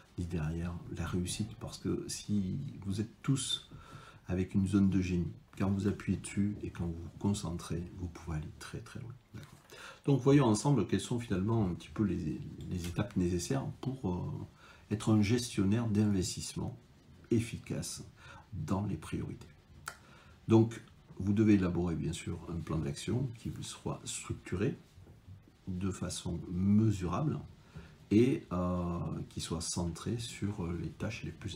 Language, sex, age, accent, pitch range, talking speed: French, male, 50-69, French, 90-115 Hz, 150 wpm